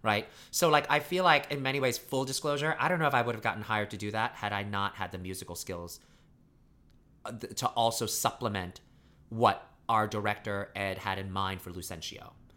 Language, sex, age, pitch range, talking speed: English, male, 30-49, 95-115 Hz, 200 wpm